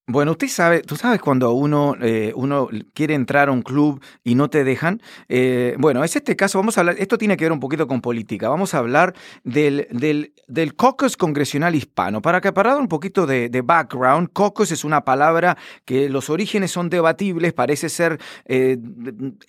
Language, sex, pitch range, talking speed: Spanish, male, 140-190 Hz, 195 wpm